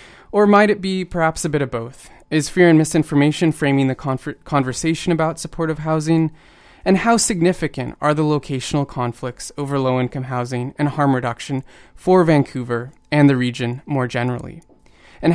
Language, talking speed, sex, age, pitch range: English, 155 wpm, male, 20-39, 130-155 Hz